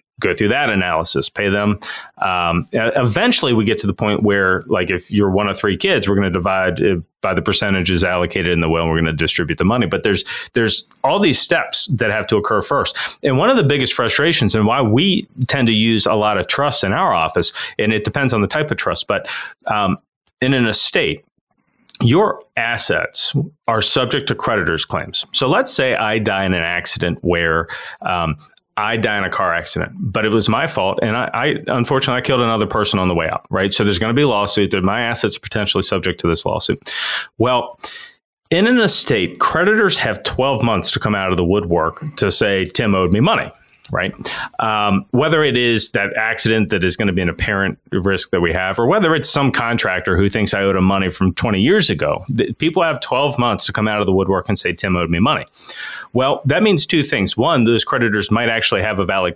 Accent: American